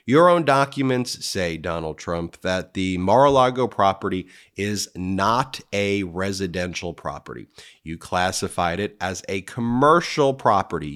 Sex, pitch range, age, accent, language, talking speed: male, 90-120 Hz, 30-49, American, English, 120 wpm